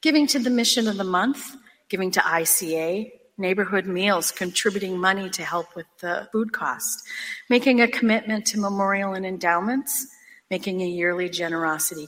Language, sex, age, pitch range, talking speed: English, female, 40-59, 175-235 Hz, 155 wpm